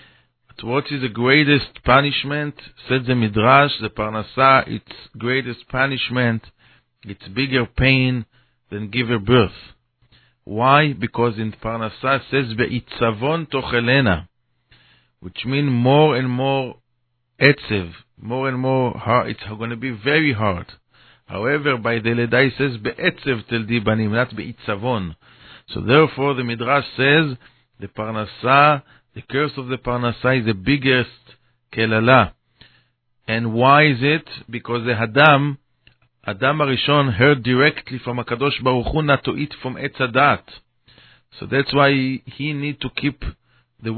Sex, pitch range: male, 115-140 Hz